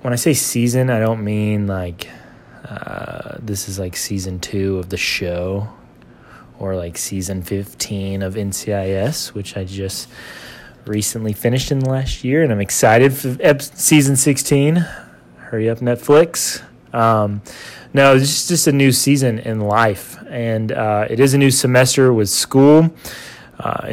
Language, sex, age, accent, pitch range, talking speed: English, male, 20-39, American, 105-130 Hz, 150 wpm